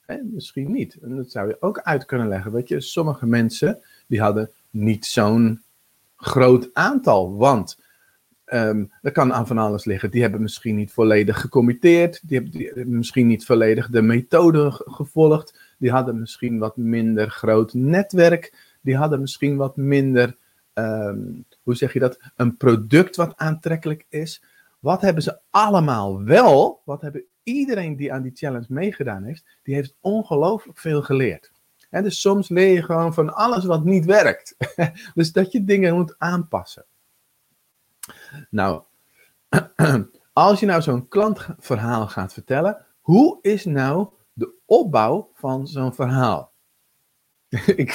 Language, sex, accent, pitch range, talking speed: Dutch, male, Dutch, 120-170 Hz, 150 wpm